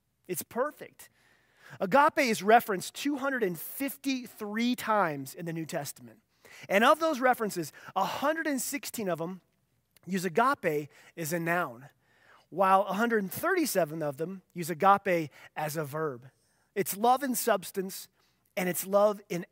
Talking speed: 125 wpm